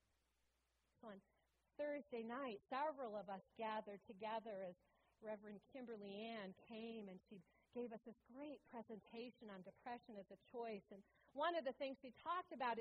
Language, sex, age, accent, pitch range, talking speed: English, female, 40-59, American, 225-315 Hz, 155 wpm